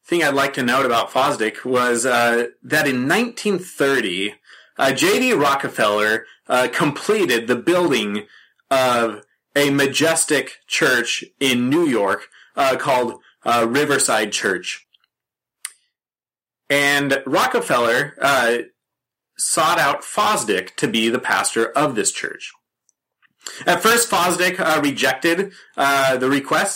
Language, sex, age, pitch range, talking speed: English, male, 30-49, 130-185 Hz, 115 wpm